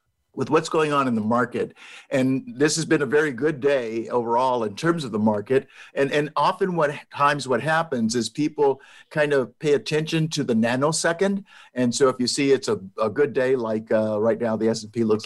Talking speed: 210 wpm